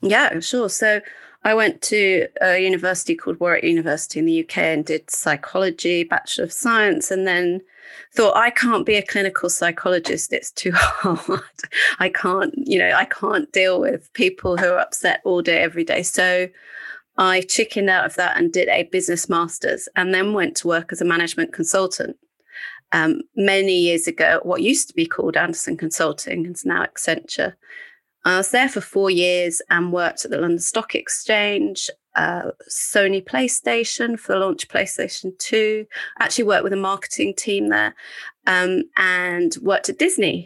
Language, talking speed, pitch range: English, 175 wpm, 180-240 Hz